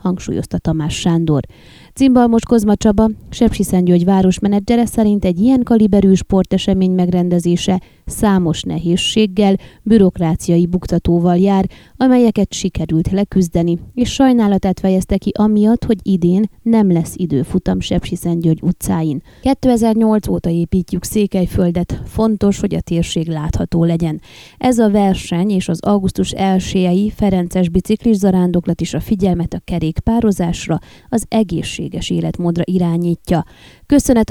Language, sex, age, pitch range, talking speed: Hungarian, female, 20-39, 170-205 Hz, 115 wpm